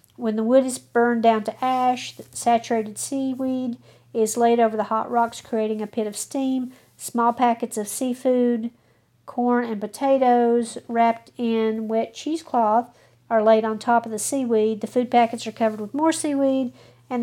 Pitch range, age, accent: 210-250 Hz, 50-69, American